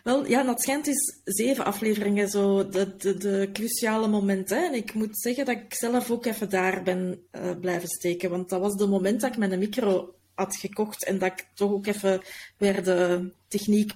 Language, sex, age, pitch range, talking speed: English, female, 30-49, 190-250 Hz, 200 wpm